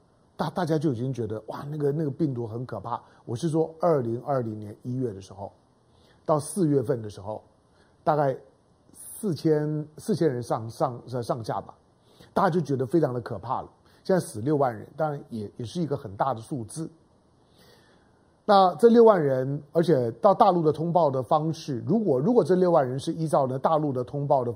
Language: Chinese